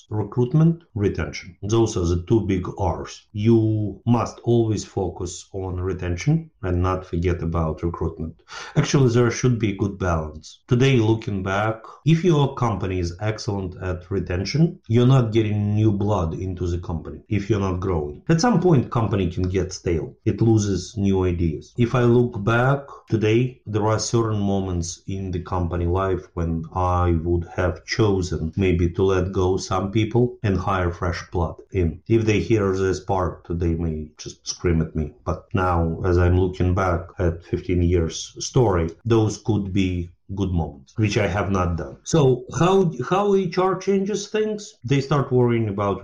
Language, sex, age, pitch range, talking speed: English, male, 30-49, 90-120 Hz, 170 wpm